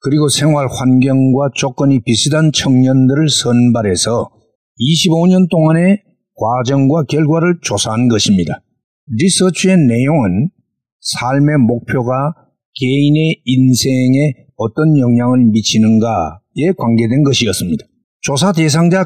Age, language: 50-69, Korean